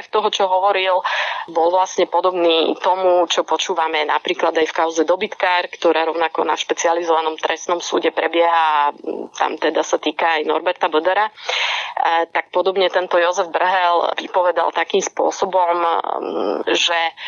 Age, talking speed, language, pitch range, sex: 30-49, 130 wpm, Slovak, 165-185 Hz, female